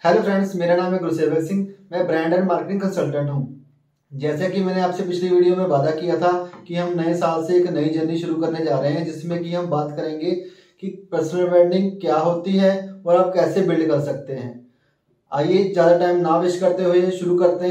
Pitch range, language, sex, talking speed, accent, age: 155-180 Hz, Hindi, male, 215 wpm, native, 20-39